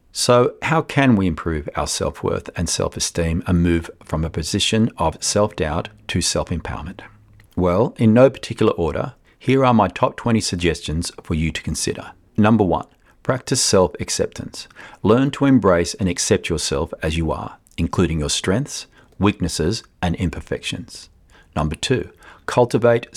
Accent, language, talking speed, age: Australian, English, 140 wpm, 40-59